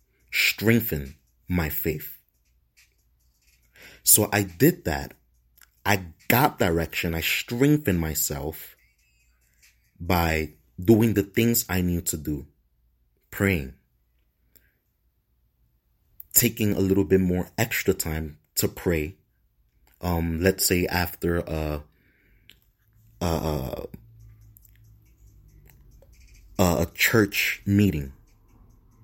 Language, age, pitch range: English, 30-49, 70-100 Hz